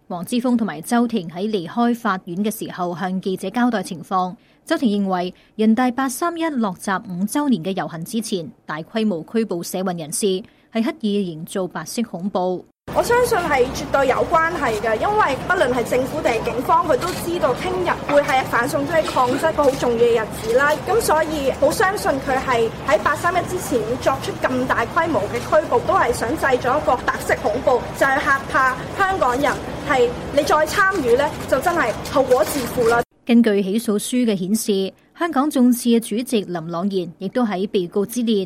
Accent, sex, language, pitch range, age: Chinese, female, English, 190-245 Hz, 20-39